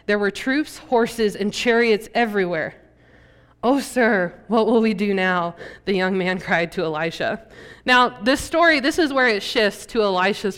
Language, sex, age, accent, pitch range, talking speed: English, female, 20-39, American, 215-285 Hz, 170 wpm